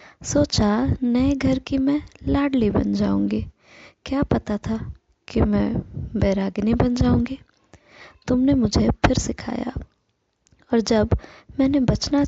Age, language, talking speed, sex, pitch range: 20-39, Hindi, 115 wpm, female, 205-245 Hz